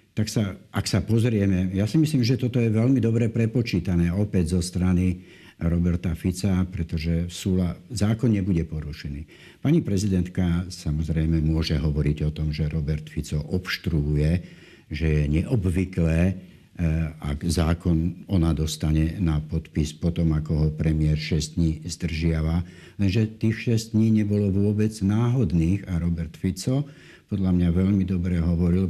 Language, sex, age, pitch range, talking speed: Slovak, male, 60-79, 80-100 Hz, 140 wpm